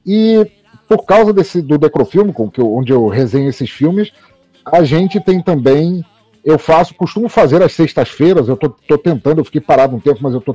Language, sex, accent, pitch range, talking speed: Portuguese, male, Brazilian, 140-180 Hz, 190 wpm